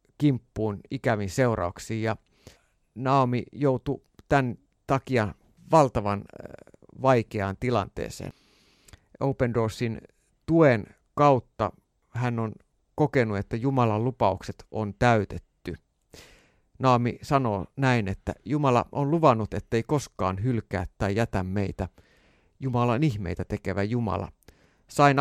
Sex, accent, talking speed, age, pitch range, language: male, native, 100 wpm, 50-69, 100-130 Hz, Finnish